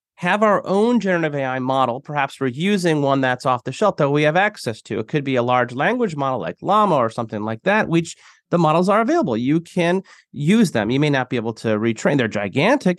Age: 30-49